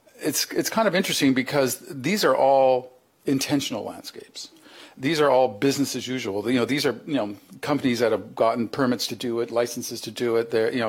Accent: American